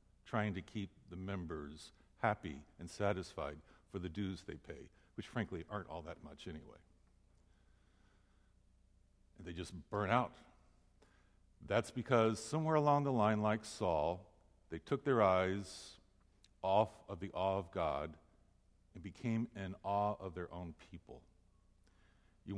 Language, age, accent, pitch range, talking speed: English, 60-79, American, 85-100 Hz, 140 wpm